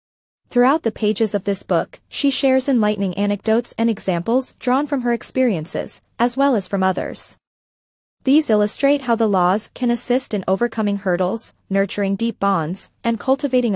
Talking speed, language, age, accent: 155 wpm, English, 20-39, American